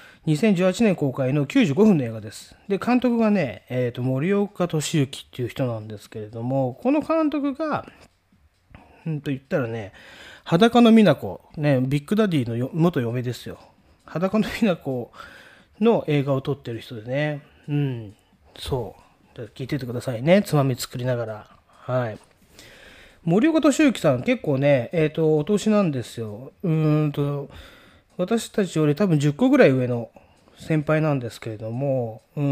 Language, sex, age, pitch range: Japanese, male, 30-49, 125-200 Hz